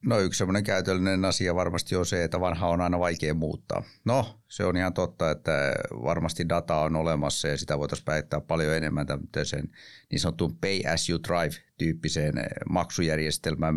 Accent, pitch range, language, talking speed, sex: native, 80-100 Hz, Finnish, 165 wpm, male